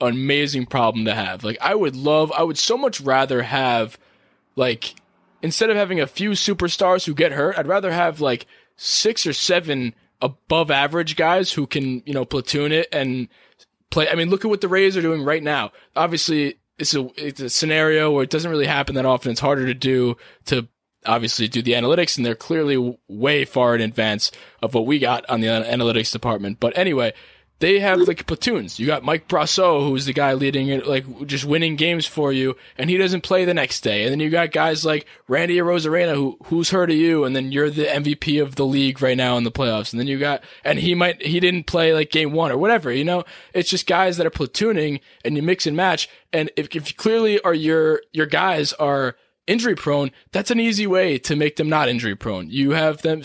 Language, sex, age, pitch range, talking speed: English, male, 20-39, 130-170 Hz, 220 wpm